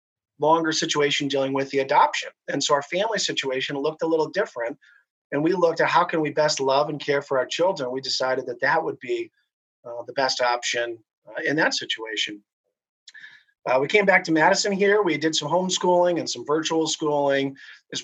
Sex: male